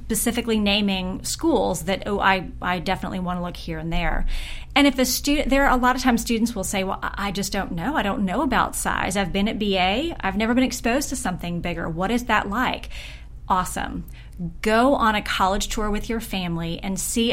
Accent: American